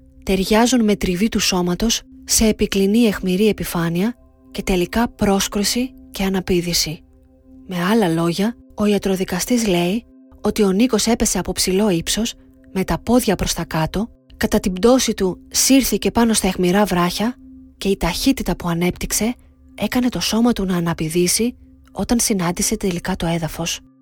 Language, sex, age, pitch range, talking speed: Greek, female, 20-39, 180-235 Hz, 145 wpm